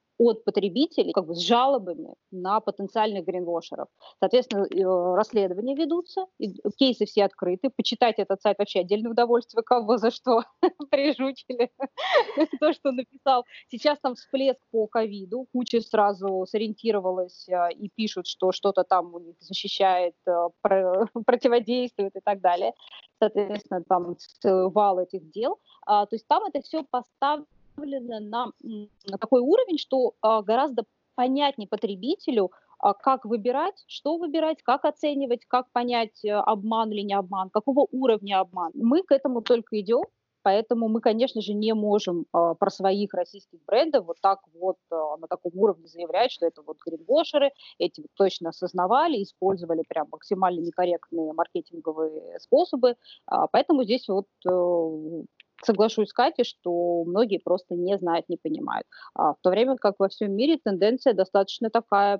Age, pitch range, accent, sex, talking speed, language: 20-39, 190-255 Hz, native, female, 135 wpm, Russian